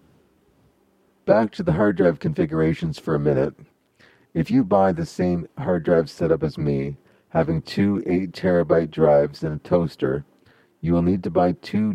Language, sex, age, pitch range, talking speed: English, male, 40-59, 80-90 Hz, 160 wpm